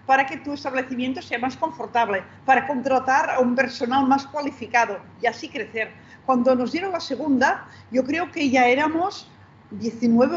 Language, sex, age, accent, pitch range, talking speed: Spanish, female, 40-59, Spanish, 235-285 Hz, 160 wpm